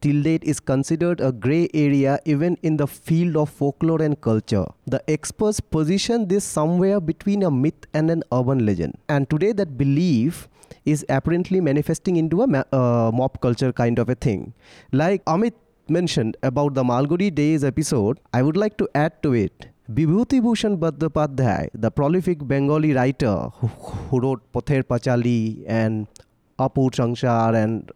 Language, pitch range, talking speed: English, 125-175 Hz, 155 wpm